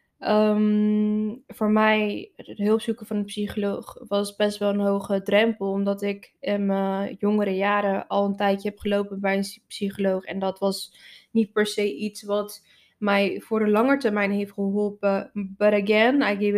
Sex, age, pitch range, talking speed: female, 20-39, 200-220 Hz, 175 wpm